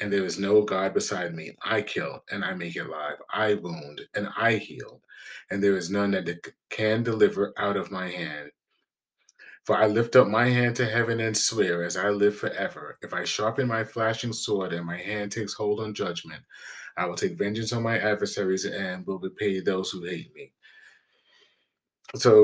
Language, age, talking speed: English, 30-49, 195 wpm